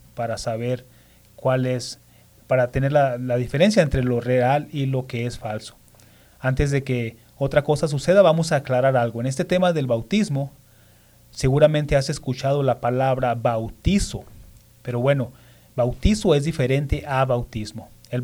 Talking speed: 150 wpm